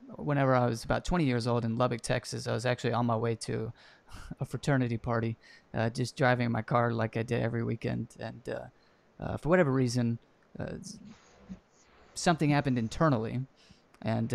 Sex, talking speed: male, 170 wpm